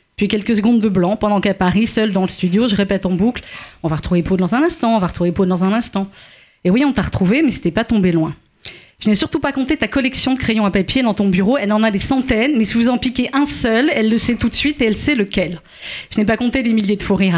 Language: French